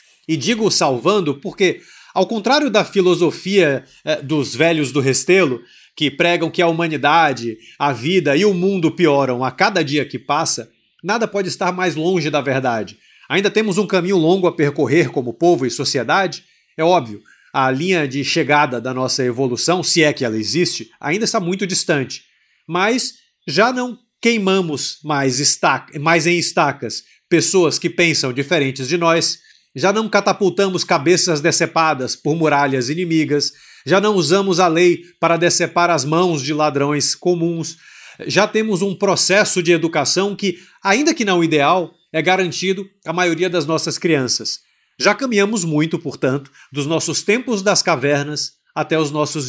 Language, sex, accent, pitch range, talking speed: Portuguese, male, Brazilian, 145-190 Hz, 155 wpm